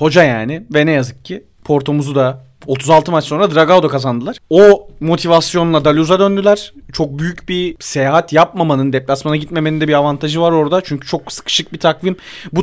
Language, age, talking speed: Turkish, 30-49, 165 wpm